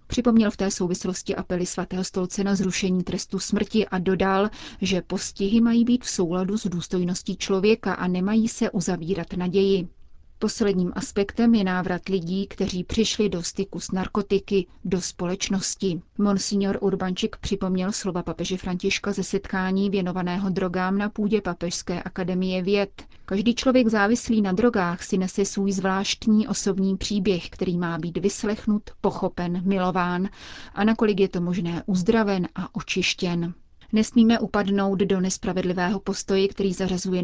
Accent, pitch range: native, 185-205 Hz